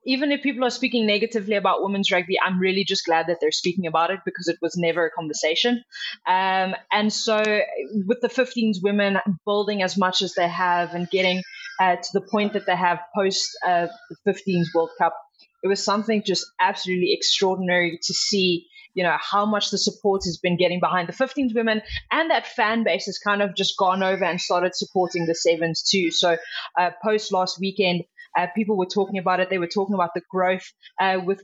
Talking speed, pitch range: 205 wpm, 175-210 Hz